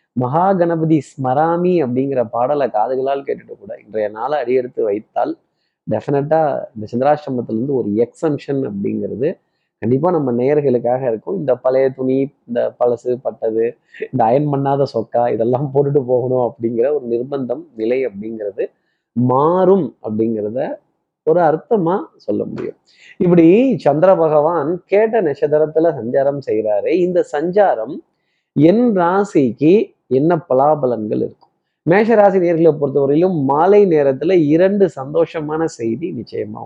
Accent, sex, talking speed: native, male, 110 wpm